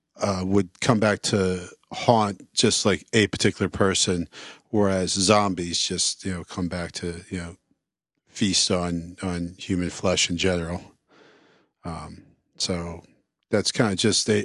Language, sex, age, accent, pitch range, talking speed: English, male, 40-59, American, 90-110 Hz, 145 wpm